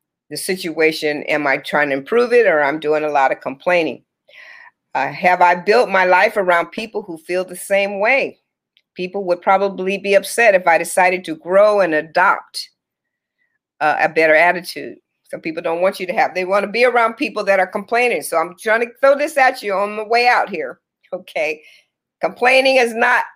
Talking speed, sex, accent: 200 wpm, female, American